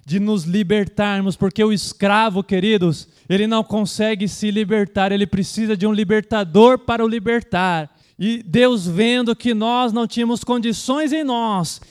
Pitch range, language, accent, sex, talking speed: 195-255 Hz, Portuguese, Brazilian, male, 150 wpm